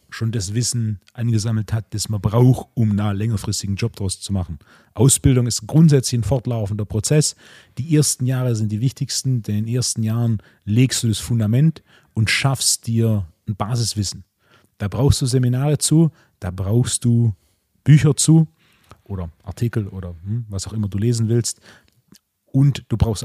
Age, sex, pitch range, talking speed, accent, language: 30-49, male, 105-130 Hz, 165 wpm, German, German